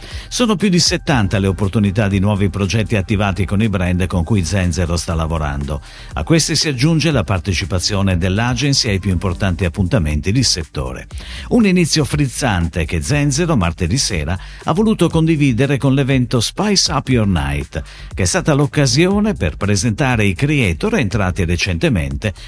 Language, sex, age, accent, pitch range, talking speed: Italian, male, 50-69, native, 90-155 Hz, 150 wpm